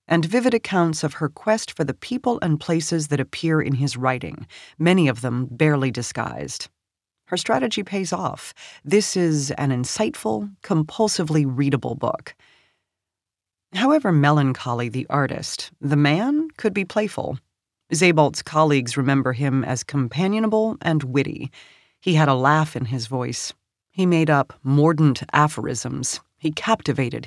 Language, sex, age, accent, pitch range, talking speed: English, female, 40-59, American, 130-165 Hz, 140 wpm